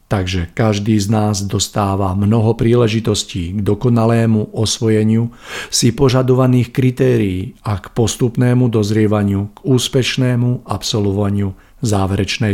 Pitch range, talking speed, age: 105-120 Hz, 100 wpm, 50-69